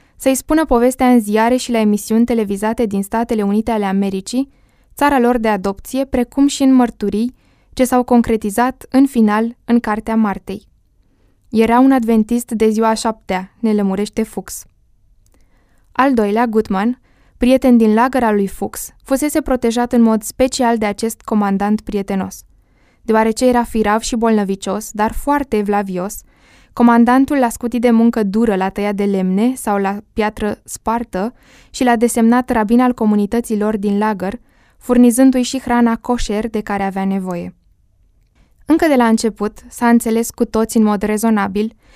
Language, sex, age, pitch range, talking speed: Romanian, female, 20-39, 205-240 Hz, 150 wpm